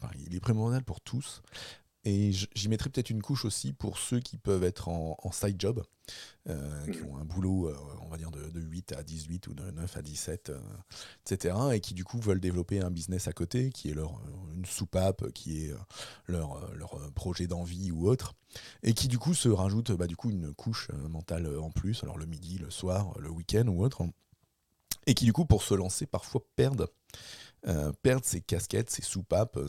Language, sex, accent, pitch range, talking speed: French, male, French, 85-110 Hz, 205 wpm